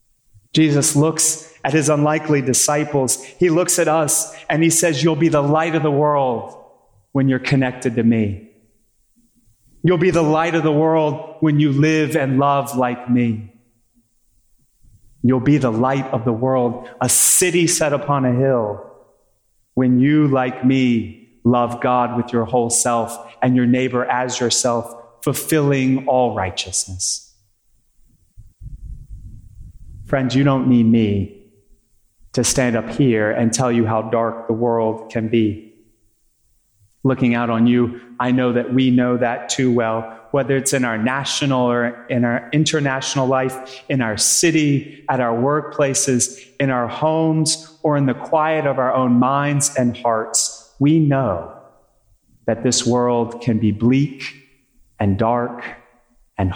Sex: male